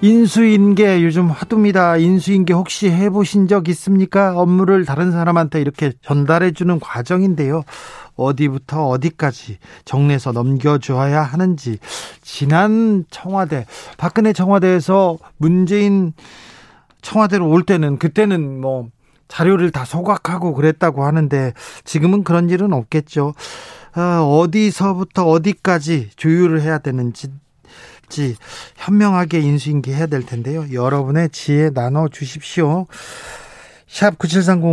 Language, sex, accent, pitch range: Korean, male, native, 140-180 Hz